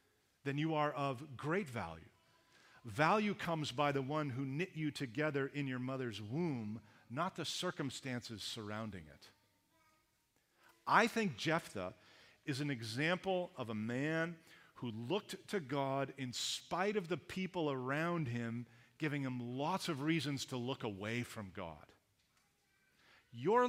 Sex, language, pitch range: male, English, 120-160 Hz